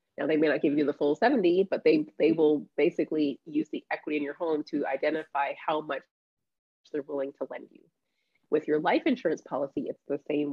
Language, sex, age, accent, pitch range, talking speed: English, female, 30-49, American, 140-160 Hz, 210 wpm